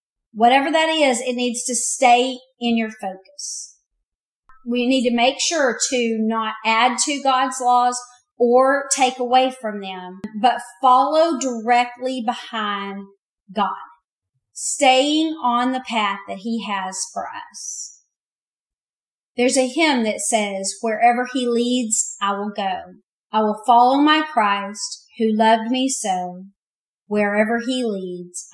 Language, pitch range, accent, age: English, 215-260 Hz, American, 40-59